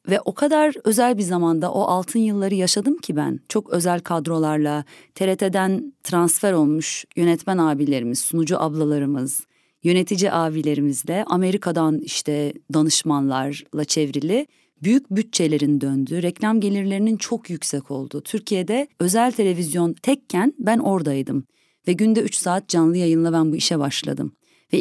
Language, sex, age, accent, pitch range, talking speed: Turkish, female, 30-49, native, 155-220 Hz, 130 wpm